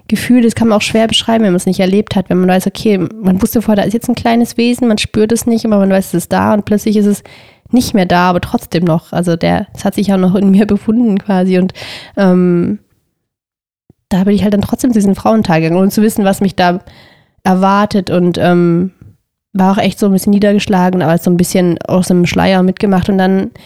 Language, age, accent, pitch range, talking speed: German, 20-39, German, 185-210 Hz, 240 wpm